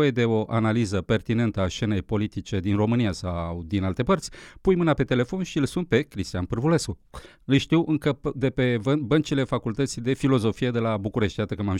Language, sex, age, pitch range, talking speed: Romanian, male, 40-59, 105-145 Hz, 195 wpm